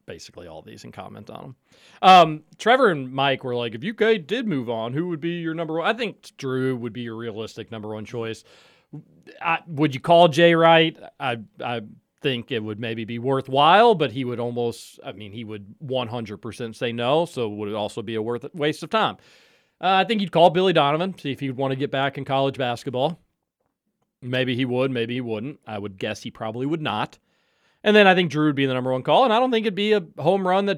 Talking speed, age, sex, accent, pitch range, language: 240 wpm, 40-59, male, American, 120-165 Hz, English